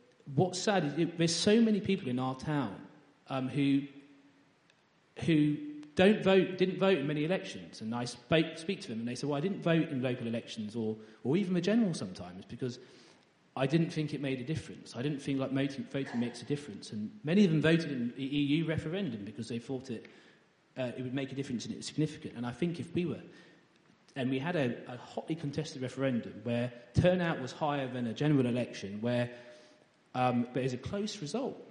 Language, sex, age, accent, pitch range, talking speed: English, male, 30-49, British, 120-170 Hz, 225 wpm